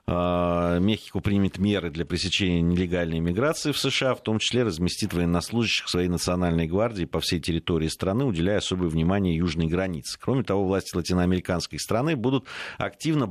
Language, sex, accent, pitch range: Russian, male, native, 85-110 Hz